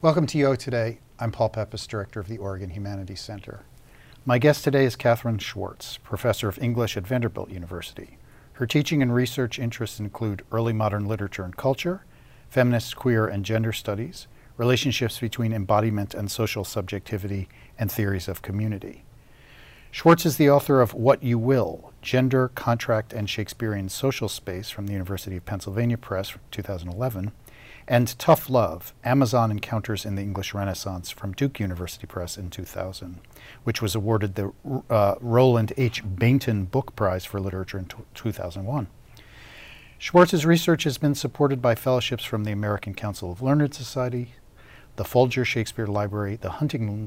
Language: English